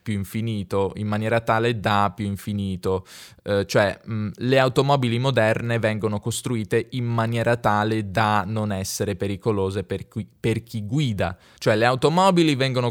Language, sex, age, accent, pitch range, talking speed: Italian, male, 20-39, native, 100-135 Hz, 150 wpm